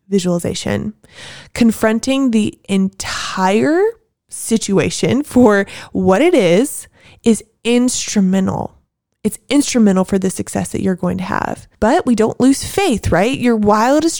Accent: American